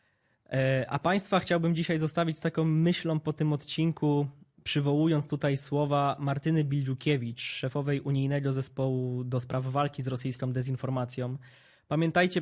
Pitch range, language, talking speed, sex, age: 130-155 Hz, Polish, 125 wpm, male, 20-39